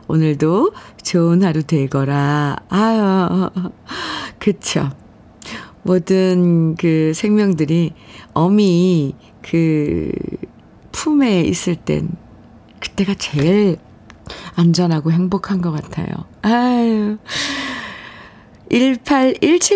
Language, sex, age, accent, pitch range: Korean, female, 50-69, native, 160-215 Hz